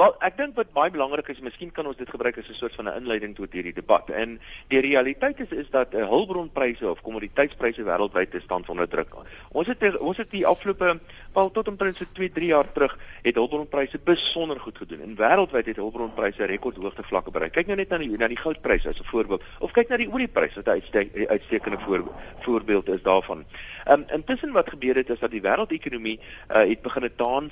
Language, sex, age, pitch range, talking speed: Dutch, male, 50-69, 110-175 Hz, 210 wpm